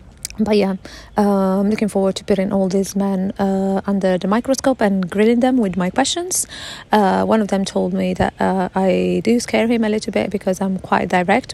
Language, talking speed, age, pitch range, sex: English, 210 wpm, 30-49, 180-215 Hz, female